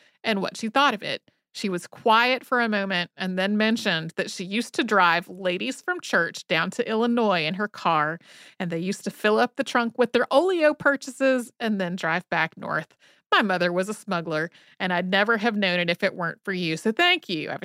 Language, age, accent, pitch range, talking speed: English, 30-49, American, 190-250 Hz, 225 wpm